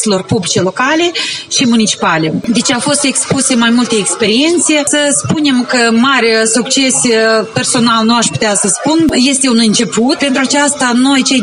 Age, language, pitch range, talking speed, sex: 30-49, Romanian, 220-260 Hz, 150 wpm, female